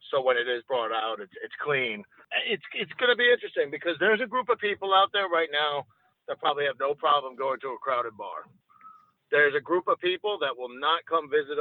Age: 50-69